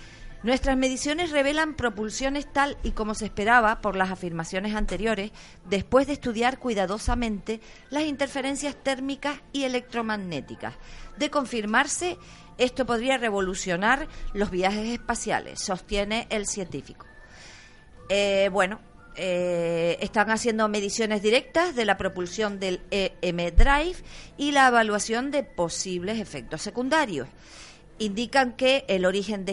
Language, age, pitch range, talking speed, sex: Spanish, 40-59, 190-255 Hz, 120 wpm, female